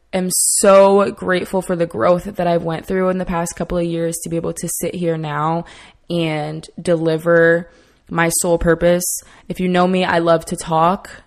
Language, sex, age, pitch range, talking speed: English, female, 20-39, 160-180 Hz, 190 wpm